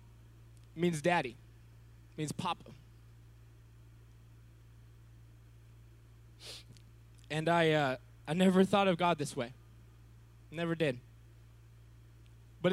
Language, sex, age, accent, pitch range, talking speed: English, male, 20-39, American, 115-165 Hz, 80 wpm